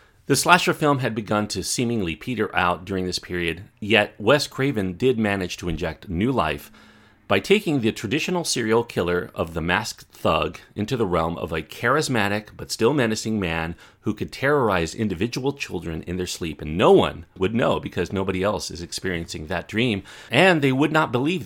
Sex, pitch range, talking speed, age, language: male, 90-125 Hz, 185 wpm, 40-59, English